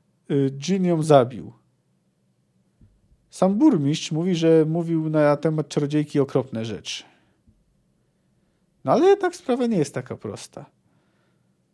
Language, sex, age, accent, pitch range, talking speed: Polish, male, 50-69, native, 135-185 Hz, 100 wpm